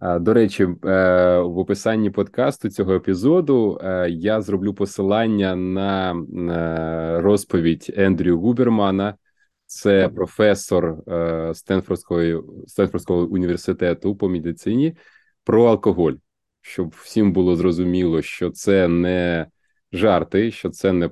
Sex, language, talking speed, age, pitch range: male, Ukrainian, 95 wpm, 20-39, 85-100 Hz